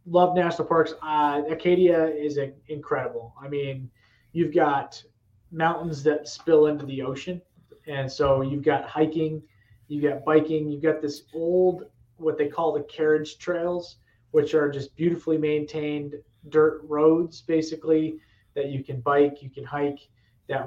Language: English